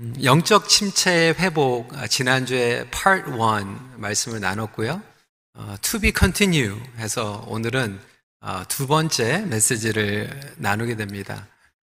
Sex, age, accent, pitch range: male, 40-59, native, 115-180 Hz